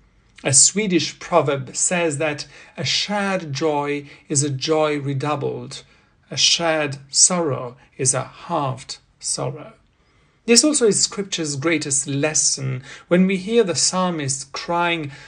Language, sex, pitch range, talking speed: English, male, 140-180 Hz, 120 wpm